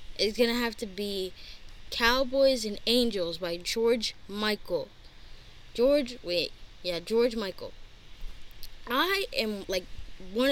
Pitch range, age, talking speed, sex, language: 185-250 Hz, 10-29, 120 wpm, female, English